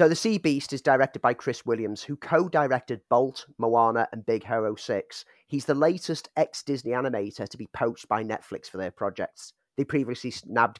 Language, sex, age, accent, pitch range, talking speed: English, male, 30-49, British, 115-140 Hz, 185 wpm